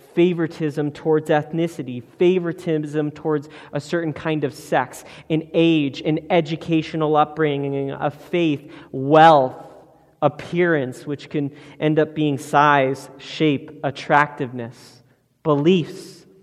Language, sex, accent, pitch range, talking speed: English, male, American, 145-180 Hz, 100 wpm